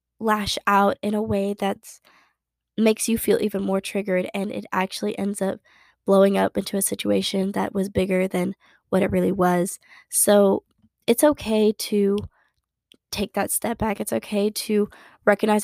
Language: English